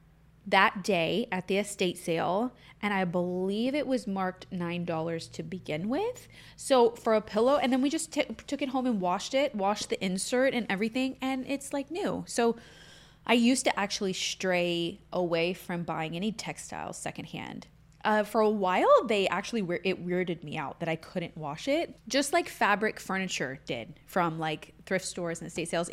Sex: female